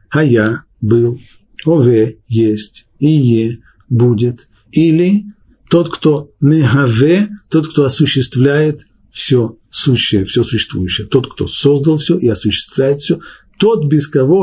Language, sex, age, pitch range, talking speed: Russian, male, 50-69, 110-150 Hz, 120 wpm